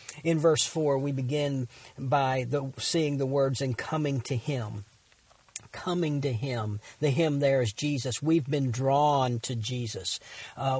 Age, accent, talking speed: 50-69, American, 150 wpm